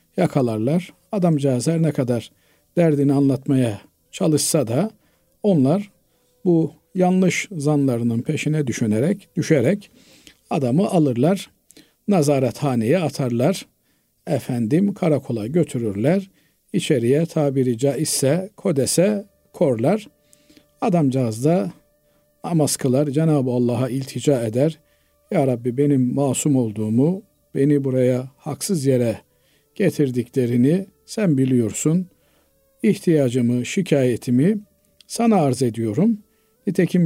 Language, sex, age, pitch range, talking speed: Turkish, male, 50-69, 130-180 Hz, 85 wpm